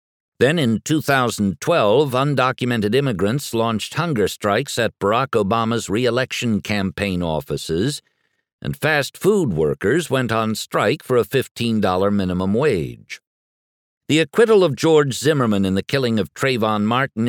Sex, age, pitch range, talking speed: male, 60-79, 100-130 Hz, 130 wpm